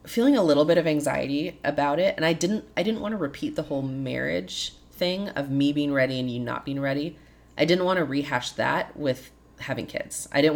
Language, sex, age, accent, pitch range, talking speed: English, female, 20-39, American, 125-150 Hz, 225 wpm